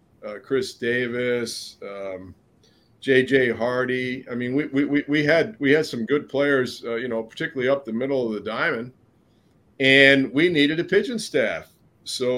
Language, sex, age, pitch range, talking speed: English, male, 40-59, 115-140 Hz, 170 wpm